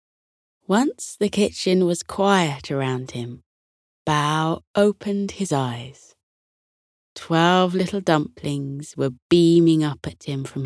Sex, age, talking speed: female, 20-39, 115 wpm